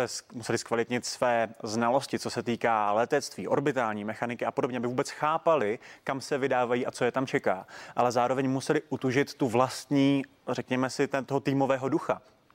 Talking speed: 165 wpm